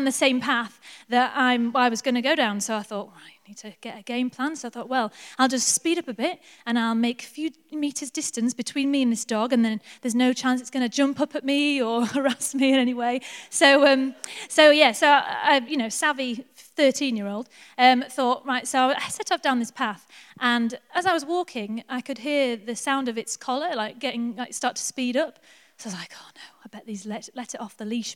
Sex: female